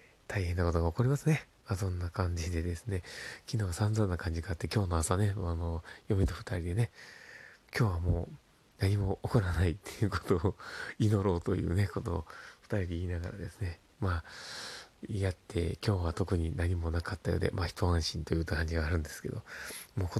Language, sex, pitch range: Japanese, male, 90-105 Hz